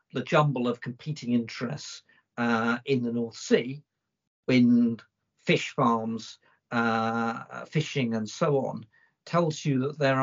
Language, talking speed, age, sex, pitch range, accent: English, 130 wpm, 50-69, male, 115-145 Hz, British